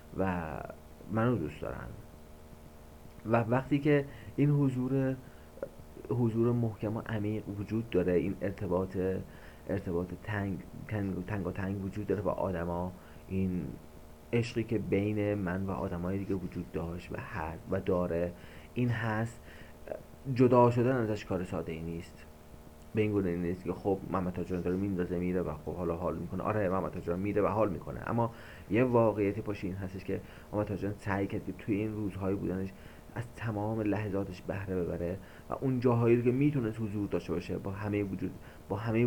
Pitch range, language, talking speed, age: 85-110 Hz, Persian, 160 wpm, 30-49